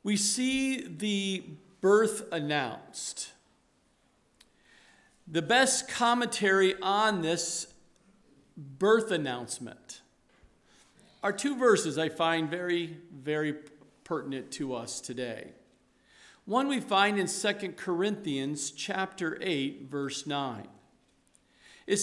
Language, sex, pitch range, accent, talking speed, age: English, male, 170-235 Hz, American, 95 wpm, 50-69